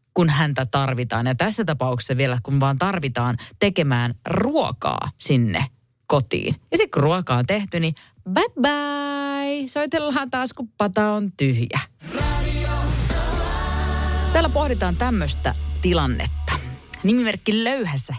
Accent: native